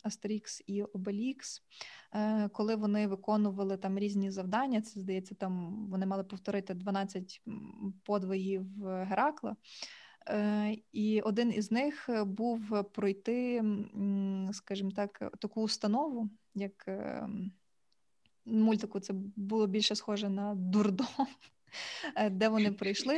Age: 20-39